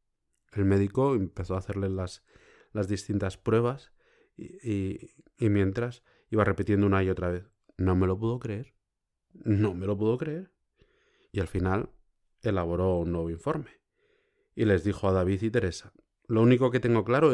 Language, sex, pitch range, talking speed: Spanish, male, 95-120 Hz, 165 wpm